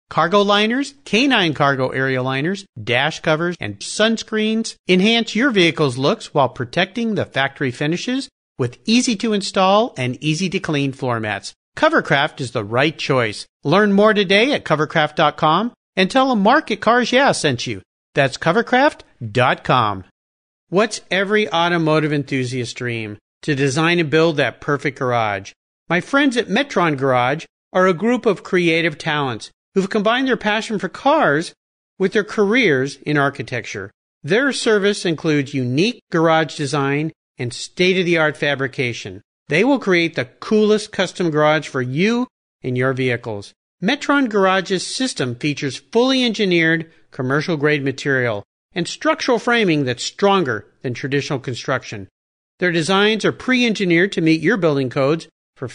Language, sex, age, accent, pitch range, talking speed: English, male, 50-69, American, 135-205 Hz, 140 wpm